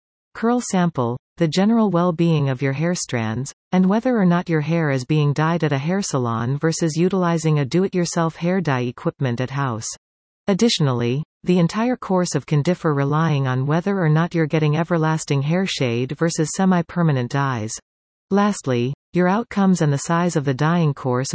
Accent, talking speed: American, 185 wpm